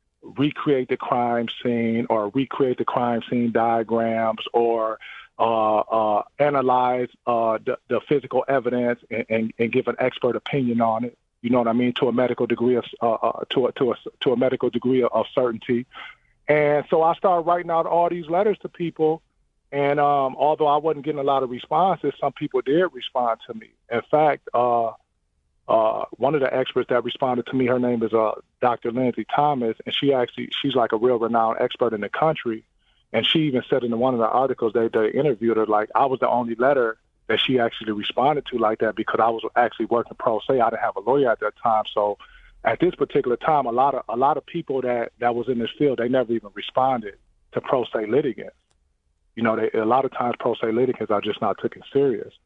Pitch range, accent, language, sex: 115-140 Hz, American, English, male